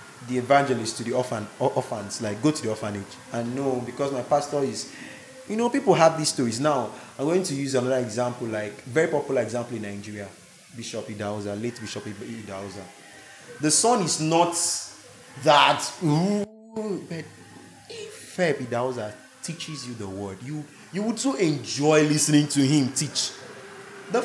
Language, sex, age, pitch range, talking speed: English, male, 20-39, 115-160 Hz, 155 wpm